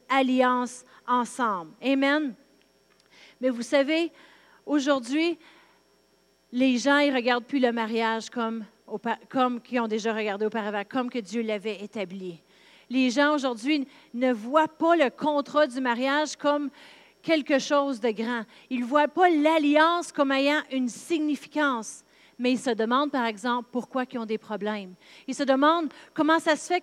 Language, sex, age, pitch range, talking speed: French, female, 40-59, 250-305 Hz, 150 wpm